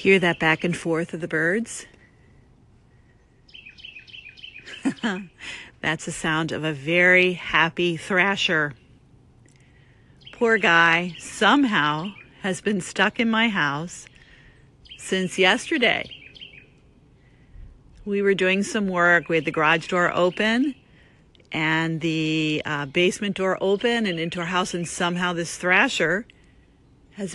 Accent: American